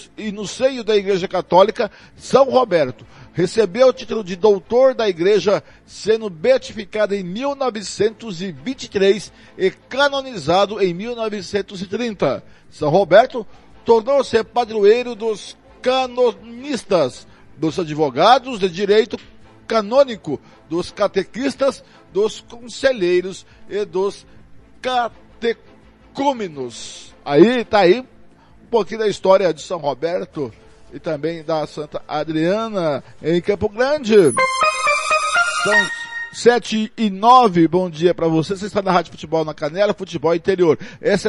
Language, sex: Portuguese, male